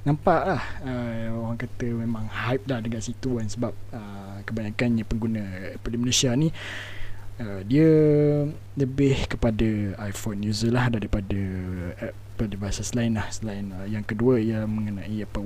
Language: Malay